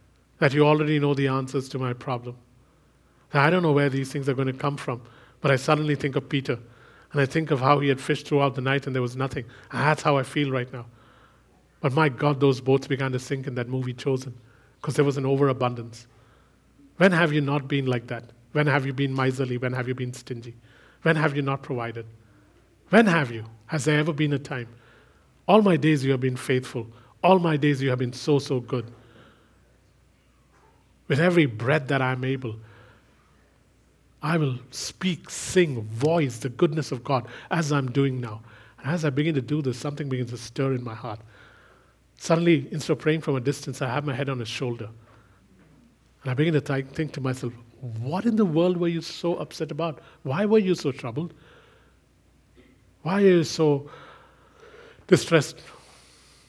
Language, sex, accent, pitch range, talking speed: English, male, Indian, 125-150 Hz, 195 wpm